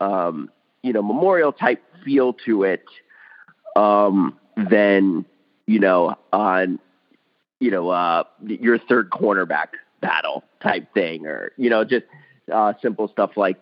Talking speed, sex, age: 130 wpm, male, 30-49